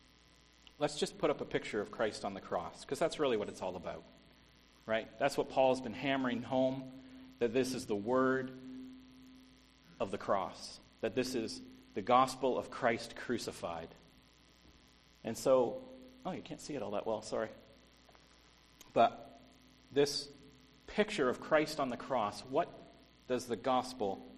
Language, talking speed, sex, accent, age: English, 160 wpm, male, American, 40-59